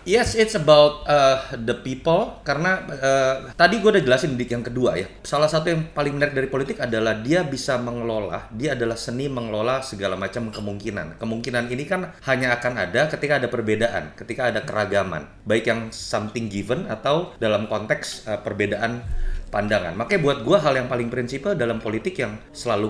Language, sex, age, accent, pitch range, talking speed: Indonesian, male, 30-49, native, 110-150 Hz, 175 wpm